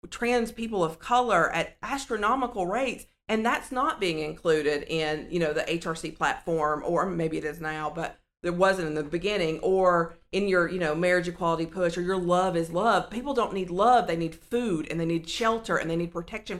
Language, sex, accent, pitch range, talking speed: English, female, American, 165-210 Hz, 205 wpm